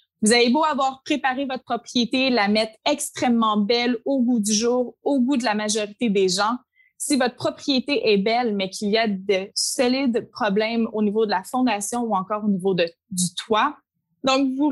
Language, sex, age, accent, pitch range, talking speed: French, female, 20-39, Canadian, 210-265 Hz, 190 wpm